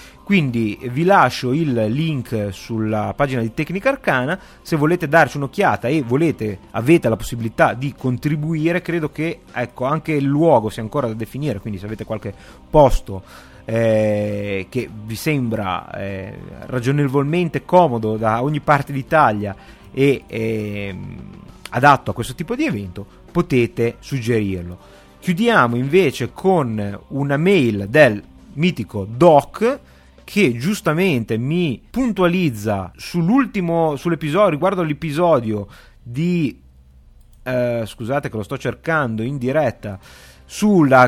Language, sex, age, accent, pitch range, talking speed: Italian, male, 30-49, native, 110-160 Hz, 120 wpm